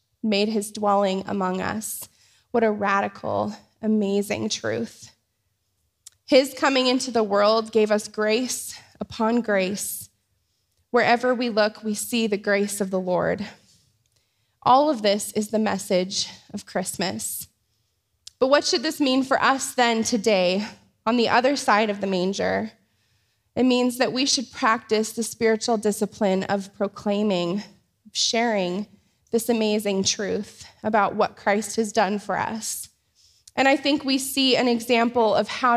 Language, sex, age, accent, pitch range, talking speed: English, female, 20-39, American, 190-240 Hz, 145 wpm